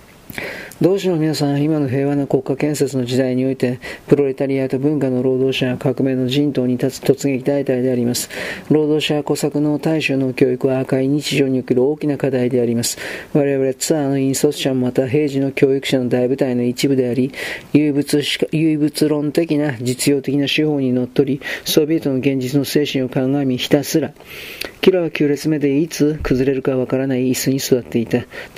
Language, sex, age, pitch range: Japanese, male, 40-59, 130-145 Hz